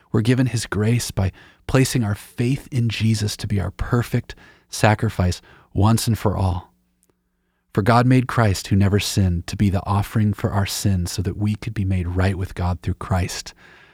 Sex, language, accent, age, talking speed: male, English, American, 40-59, 190 wpm